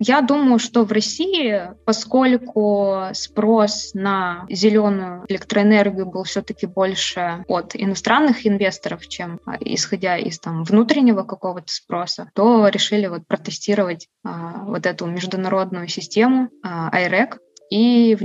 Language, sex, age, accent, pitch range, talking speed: Russian, female, 20-39, native, 185-225 Hz, 110 wpm